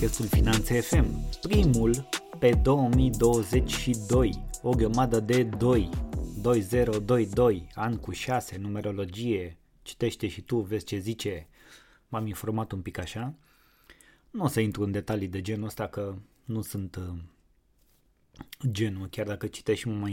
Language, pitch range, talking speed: Romanian, 100-115 Hz, 130 wpm